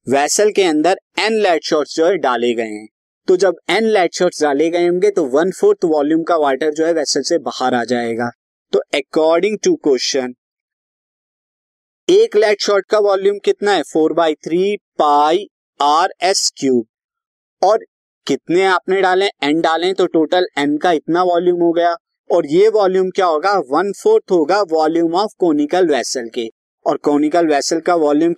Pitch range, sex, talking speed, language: 150-250 Hz, male, 175 wpm, Hindi